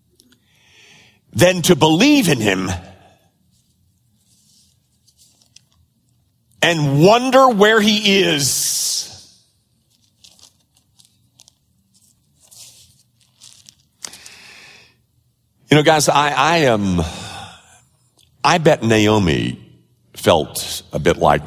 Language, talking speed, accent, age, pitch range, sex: English, 65 wpm, American, 50-69, 100-145 Hz, male